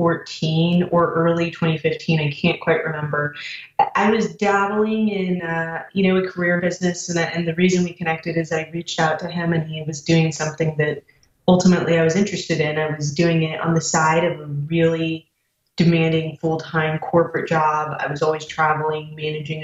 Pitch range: 155-175 Hz